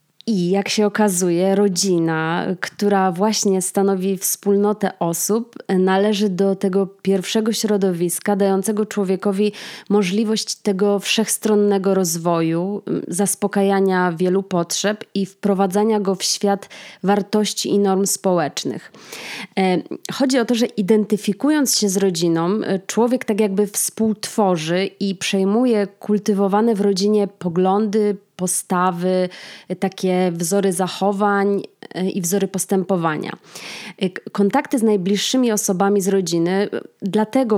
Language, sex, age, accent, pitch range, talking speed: Polish, female, 20-39, native, 185-210 Hz, 105 wpm